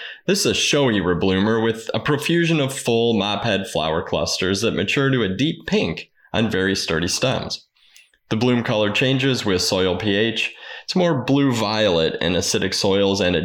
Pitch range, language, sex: 95-125 Hz, English, male